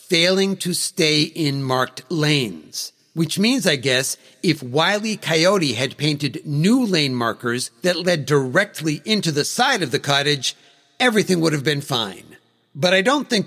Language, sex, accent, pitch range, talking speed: English, male, American, 135-180 Hz, 160 wpm